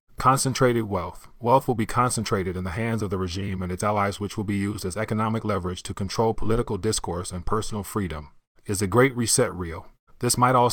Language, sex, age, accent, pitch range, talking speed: English, male, 30-49, American, 95-115 Hz, 205 wpm